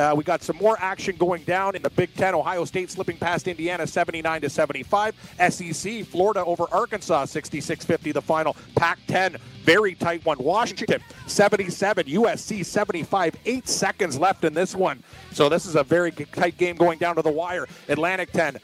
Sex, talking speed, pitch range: male, 170 wpm, 160-185 Hz